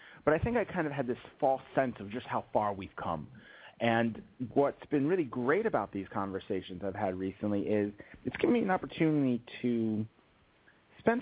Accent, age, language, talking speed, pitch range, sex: American, 30-49, English, 185 wpm, 95-125 Hz, male